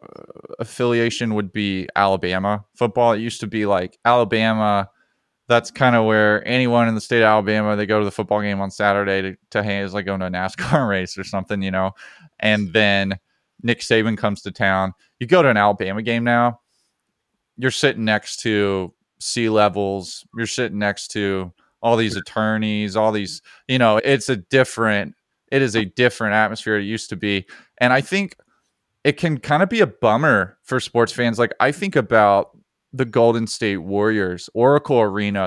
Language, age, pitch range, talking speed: English, 20-39, 100-120 Hz, 185 wpm